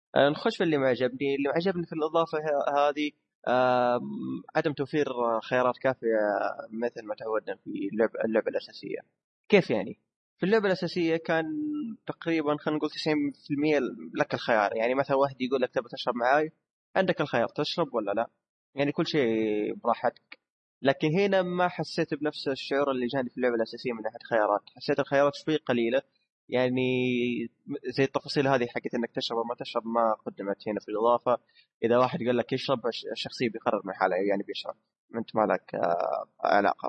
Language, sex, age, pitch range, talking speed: Arabic, male, 20-39, 120-155 Hz, 155 wpm